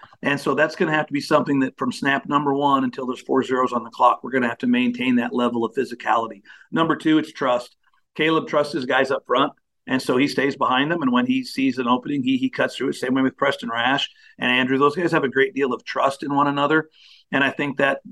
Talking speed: 265 wpm